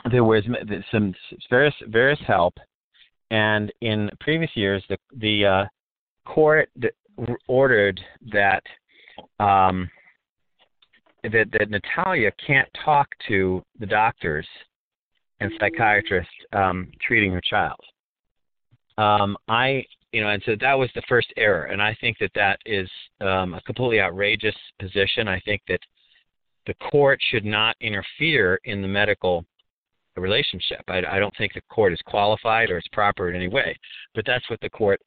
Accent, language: American, English